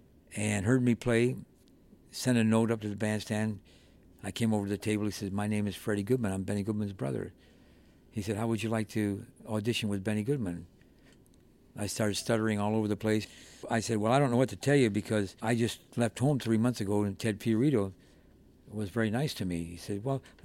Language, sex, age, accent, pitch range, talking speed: English, male, 60-79, American, 105-120 Hz, 225 wpm